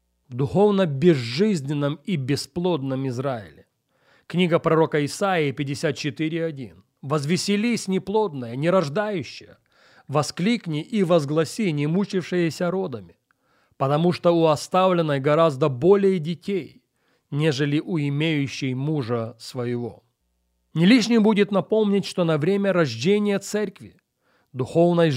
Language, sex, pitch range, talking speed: Russian, male, 140-185 Hz, 95 wpm